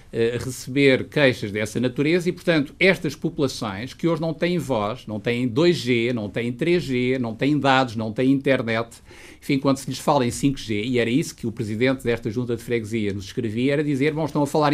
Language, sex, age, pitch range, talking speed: Portuguese, male, 50-69, 115-145 Hz, 210 wpm